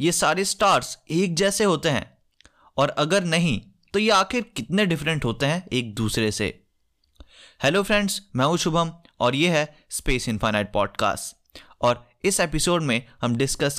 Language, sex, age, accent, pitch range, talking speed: Hindi, male, 20-39, native, 120-185 Hz, 160 wpm